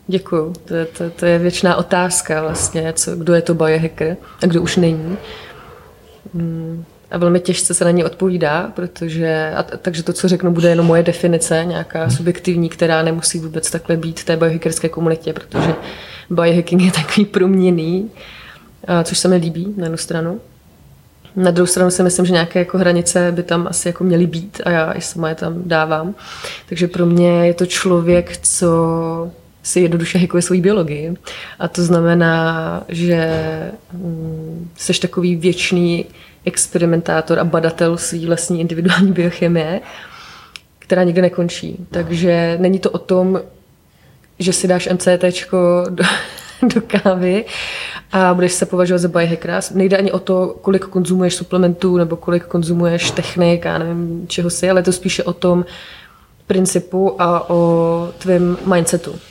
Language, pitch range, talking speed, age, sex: Slovak, 170-180 Hz, 155 wpm, 20-39, female